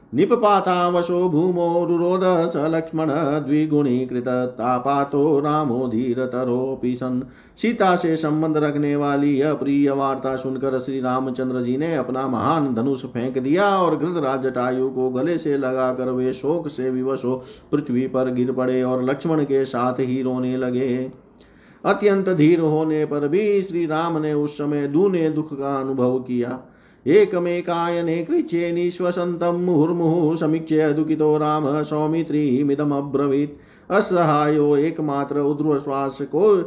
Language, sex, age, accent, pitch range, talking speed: Hindi, male, 50-69, native, 130-165 Hz, 120 wpm